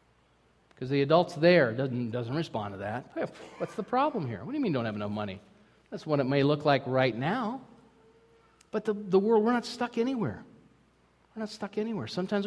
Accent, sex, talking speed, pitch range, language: American, male, 200 wpm, 130-200 Hz, English